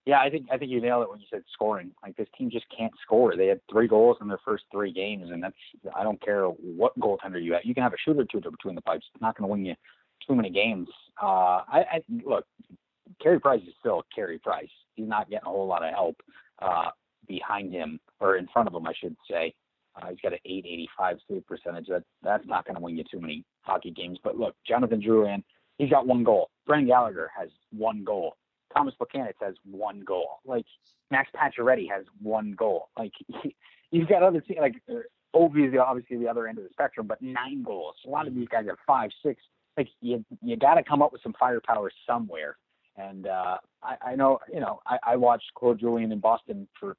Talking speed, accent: 225 wpm, American